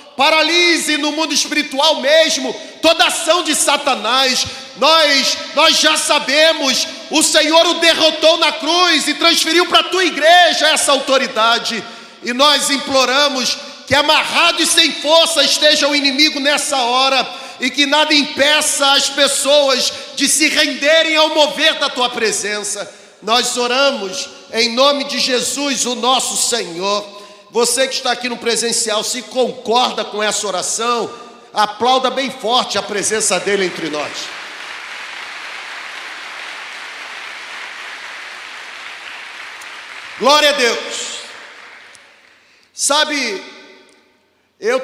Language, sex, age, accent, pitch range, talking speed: Portuguese, male, 40-59, Brazilian, 245-300 Hz, 115 wpm